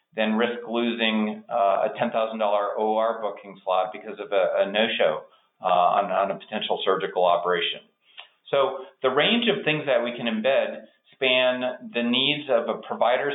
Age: 40-59